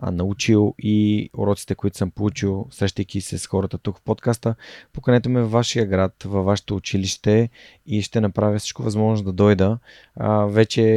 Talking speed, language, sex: 160 wpm, Bulgarian, male